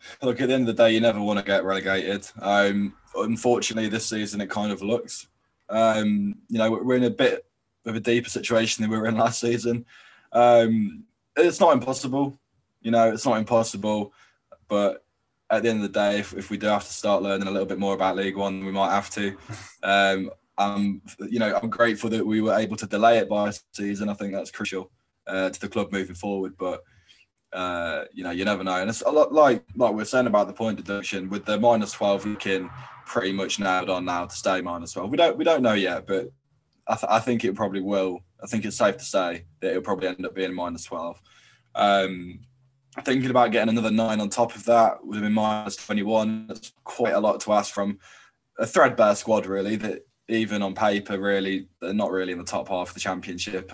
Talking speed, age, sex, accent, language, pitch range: 225 wpm, 20-39, male, British, English, 95-115 Hz